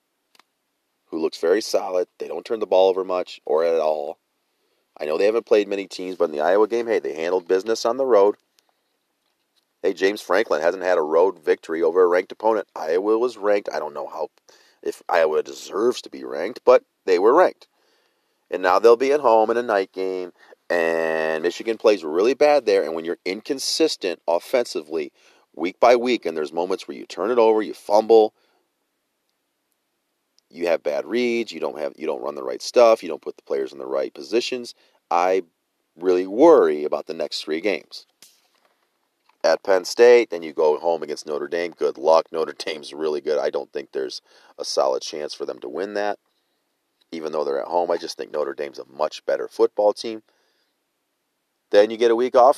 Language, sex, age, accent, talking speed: English, male, 30-49, American, 200 wpm